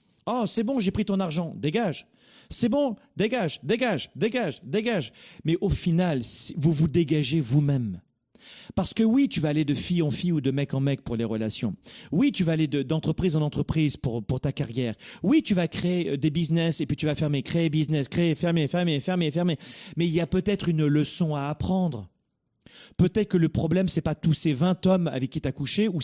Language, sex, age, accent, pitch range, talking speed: French, male, 40-59, French, 140-190 Hz, 215 wpm